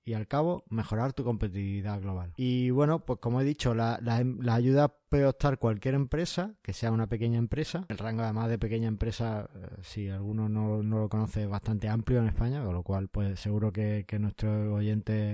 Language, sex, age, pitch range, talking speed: Spanish, male, 20-39, 105-125 Hz, 205 wpm